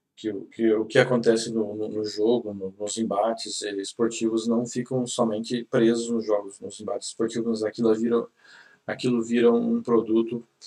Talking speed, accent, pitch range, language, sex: 170 wpm, Brazilian, 110-120 Hz, Portuguese, male